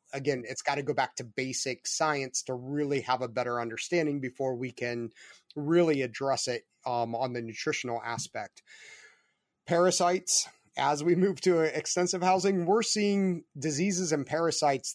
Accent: American